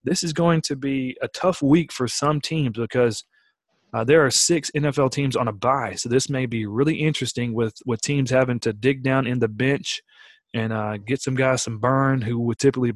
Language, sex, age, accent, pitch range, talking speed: English, male, 30-49, American, 115-145 Hz, 220 wpm